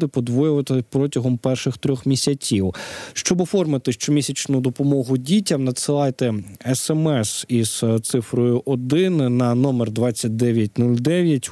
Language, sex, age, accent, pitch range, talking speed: Ukrainian, male, 20-39, native, 120-155 Hz, 95 wpm